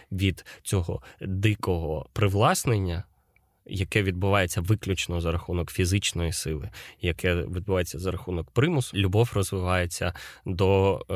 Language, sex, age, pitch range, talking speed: Ukrainian, male, 20-39, 90-105 Hz, 100 wpm